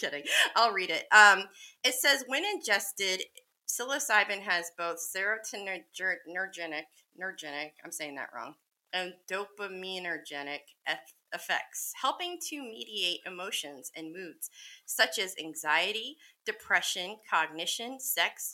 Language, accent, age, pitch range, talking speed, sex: English, American, 30-49, 160-210 Hz, 105 wpm, female